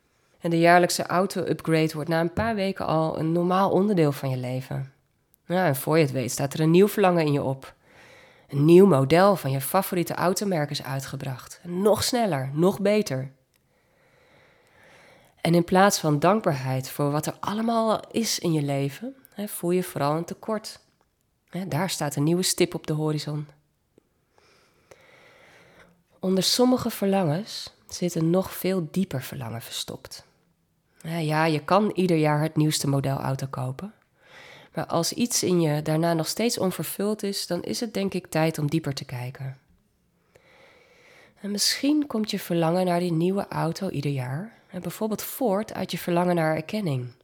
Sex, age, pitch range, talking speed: female, 20-39, 145-195 Hz, 160 wpm